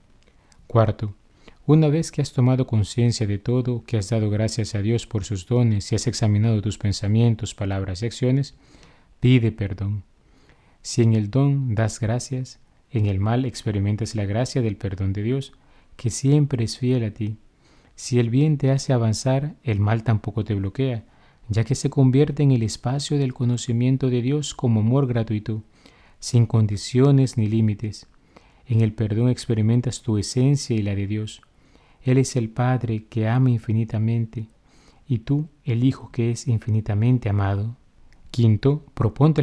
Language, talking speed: Spanish, 160 wpm